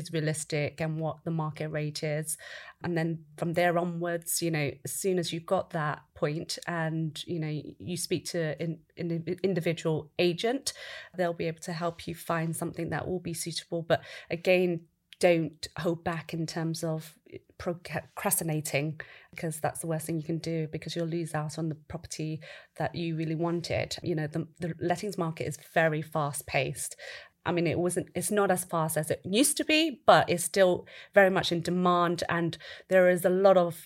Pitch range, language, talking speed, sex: 155-175 Hz, English, 190 wpm, female